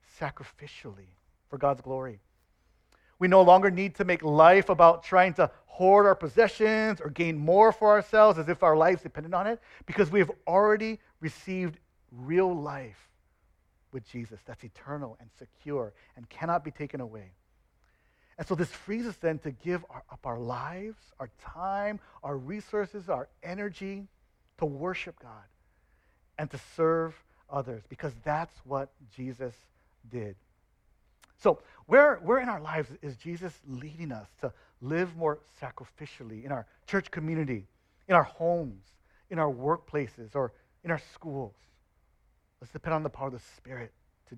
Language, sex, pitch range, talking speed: English, male, 110-175 Hz, 155 wpm